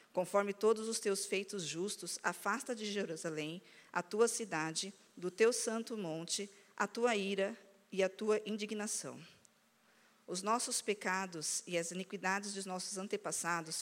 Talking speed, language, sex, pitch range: 140 wpm, Portuguese, female, 175-205 Hz